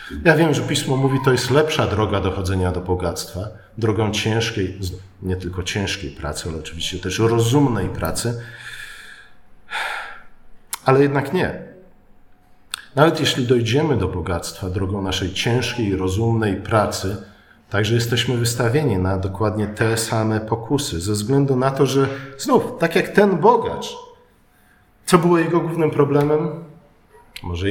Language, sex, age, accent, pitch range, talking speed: Polish, male, 40-59, native, 105-145 Hz, 130 wpm